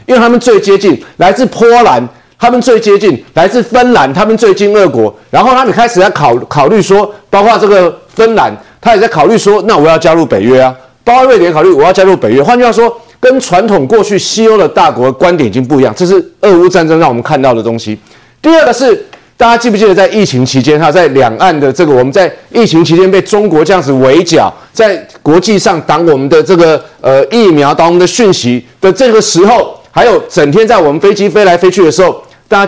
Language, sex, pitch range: Chinese, male, 140-220 Hz